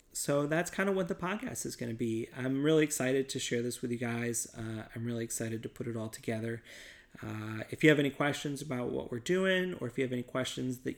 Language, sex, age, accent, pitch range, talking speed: English, male, 30-49, American, 120-140 Hz, 250 wpm